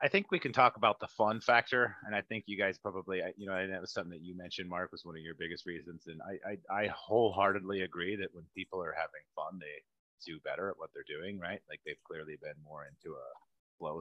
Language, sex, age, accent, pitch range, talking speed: English, male, 30-49, American, 95-125 Hz, 255 wpm